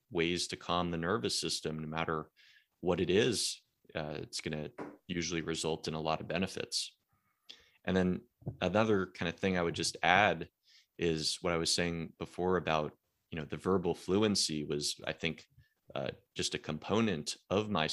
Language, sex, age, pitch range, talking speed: English, male, 20-39, 80-85 Hz, 175 wpm